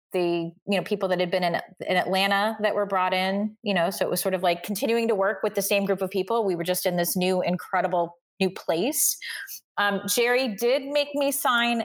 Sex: female